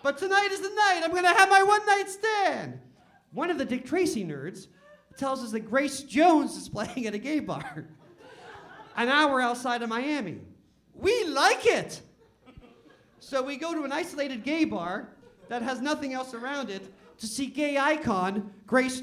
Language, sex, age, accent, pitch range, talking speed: English, male, 40-59, American, 240-315 Hz, 175 wpm